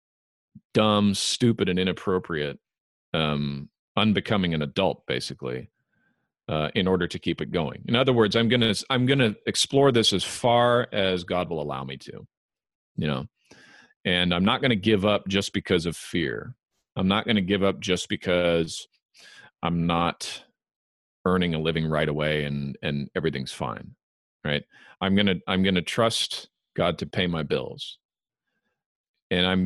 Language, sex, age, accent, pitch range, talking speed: English, male, 40-59, American, 80-105 Hz, 155 wpm